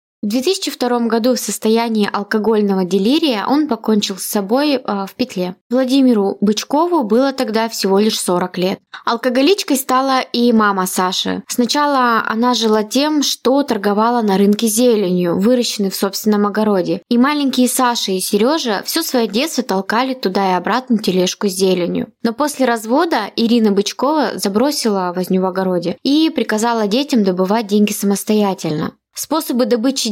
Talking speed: 145 wpm